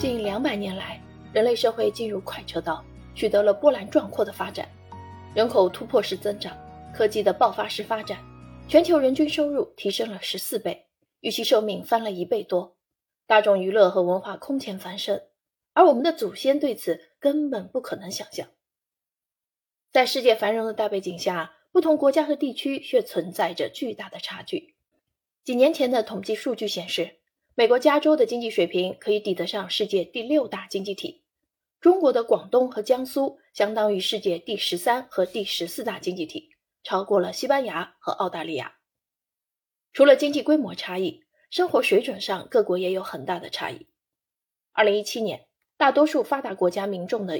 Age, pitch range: 30-49, 195-280 Hz